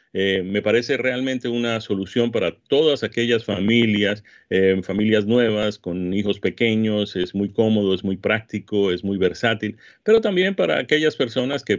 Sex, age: male, 40-59